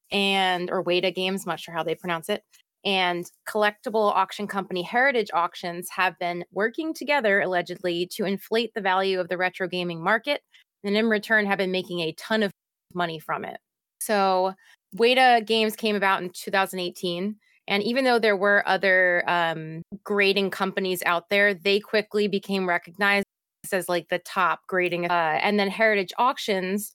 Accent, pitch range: American, 180-210 Hz